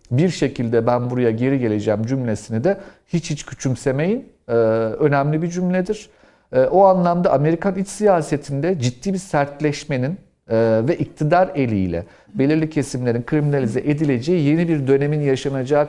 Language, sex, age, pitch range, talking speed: Turkish, male, 50-69, 130-175 Hz, 125 wpm